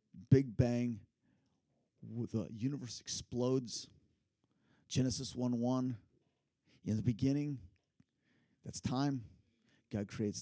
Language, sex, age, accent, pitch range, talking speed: English, male, 50-69, American, 105-130 Hz, 85 wpm